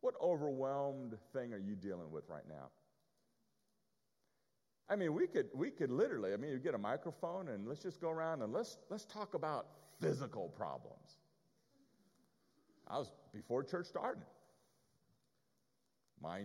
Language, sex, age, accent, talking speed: English, male, 50-69, American, 145 wpm